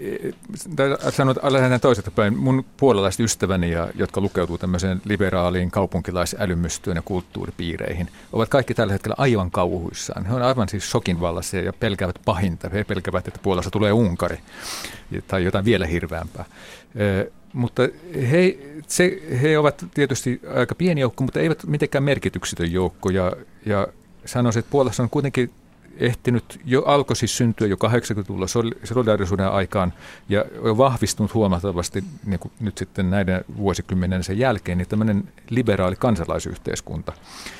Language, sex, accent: Finnish, male, native